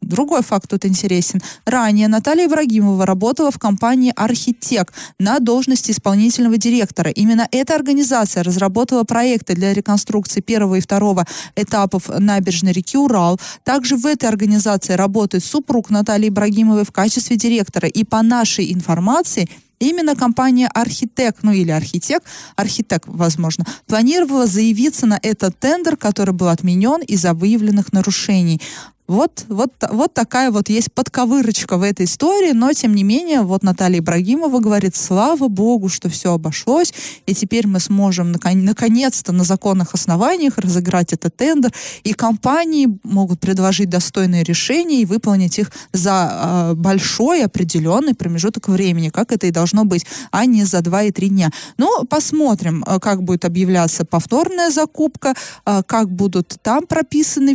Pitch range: 185-245 Hz